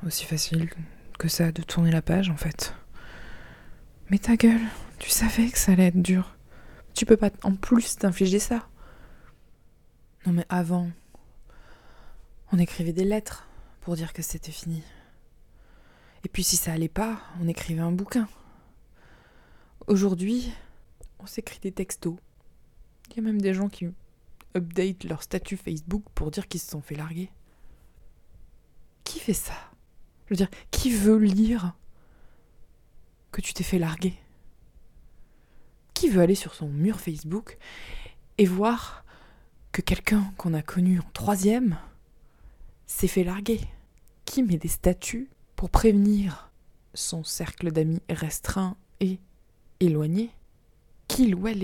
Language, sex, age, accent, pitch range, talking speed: French, female, 20-39, French, 170-210 Hz, 140 wpm